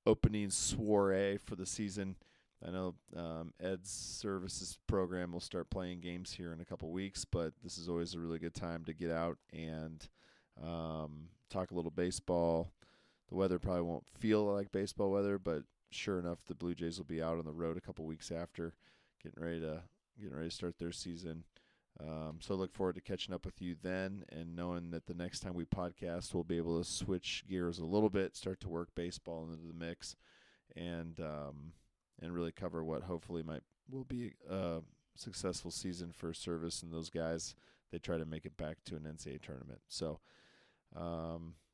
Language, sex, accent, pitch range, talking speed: English, male, American, 85-95 Hz, 195 wpm